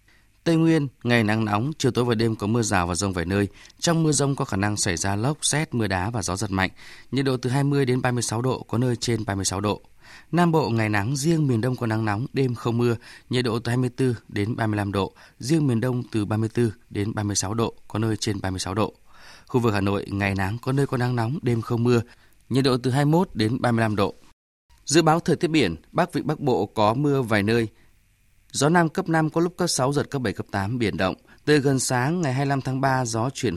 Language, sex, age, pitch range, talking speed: Vietnamese, male, 20-39, 105-135 Hz, 240 wpm